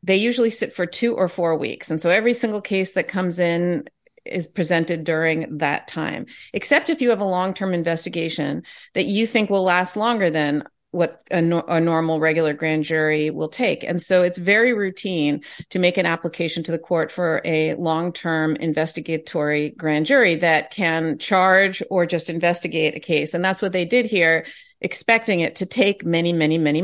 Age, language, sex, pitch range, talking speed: 40-59, English, female, 165-195 Hz, 185 wpm